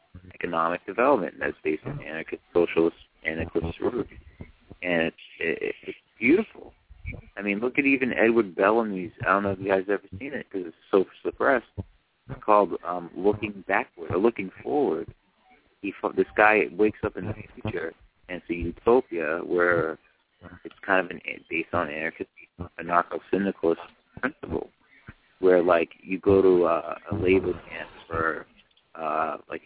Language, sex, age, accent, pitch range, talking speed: English, male, 30-49, American, 85-100 Hz, 155 wpm